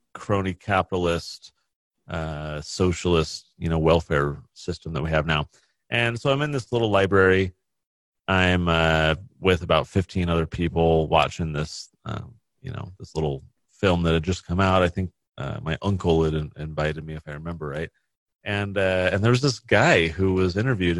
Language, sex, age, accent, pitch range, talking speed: English, male, 30-49, American, 80-95 Hz, 170 wpm